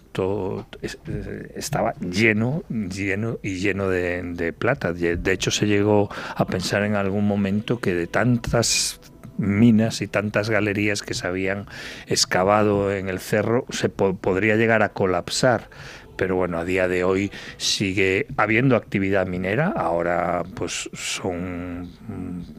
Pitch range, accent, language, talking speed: 90-110 Hz, Spanish, Spanish, 130 wpm